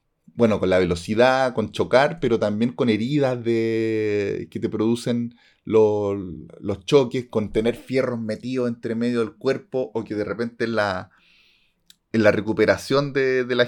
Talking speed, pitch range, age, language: 160 wpm, 110-130 Hz, 30-49, Spanish